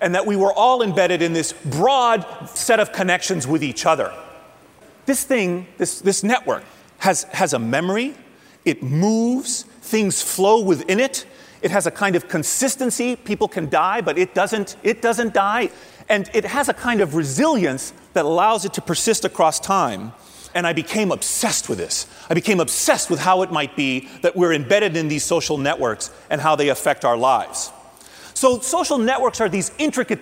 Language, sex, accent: English, male, American